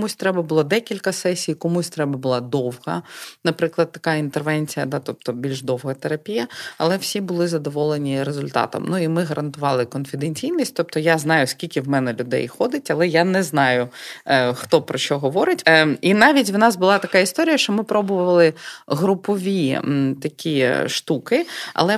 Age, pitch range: 20-39, 150-190 Hz